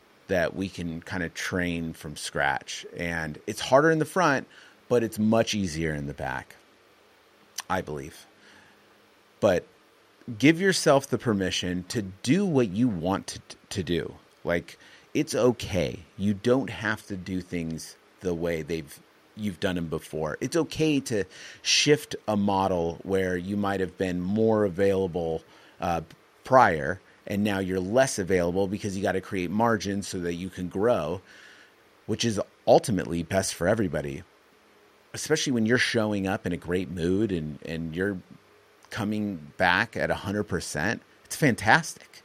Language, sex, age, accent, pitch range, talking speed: English, male, 30-49, American, 90-115 Hz, 150 wpm